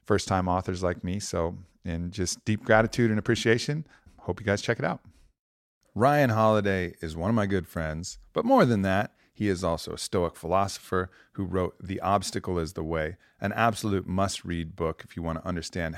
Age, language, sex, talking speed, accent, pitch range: 40-59, English, male, 190 wpm, American, 85-105 Hz